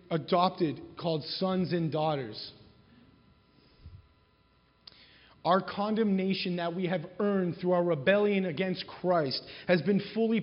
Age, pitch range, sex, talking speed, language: 30-49, 165-215 Hz, male, 110 wpm, English